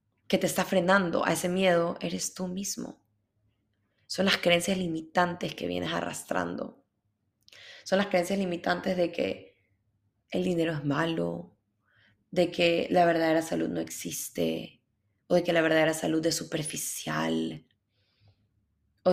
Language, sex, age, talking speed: English, female, 20-39, 135 wpm